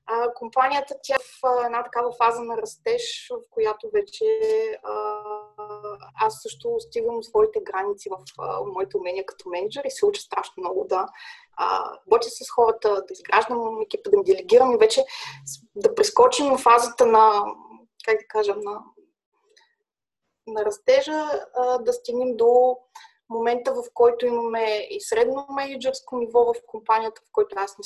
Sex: female